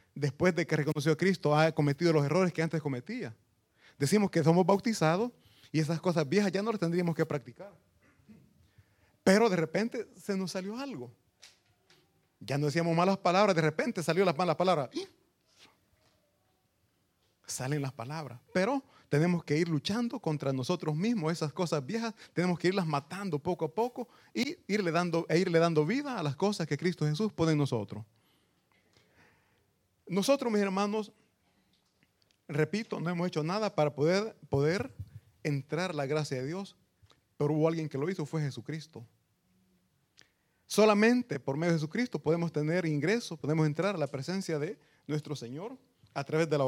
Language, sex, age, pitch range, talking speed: Italian, male, 30-49, 145-195 Hz, 160 wpm